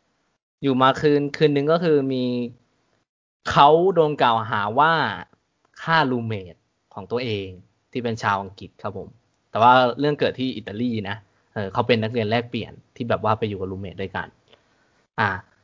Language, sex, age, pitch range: Thai, male, 20-39, 115-160 Hz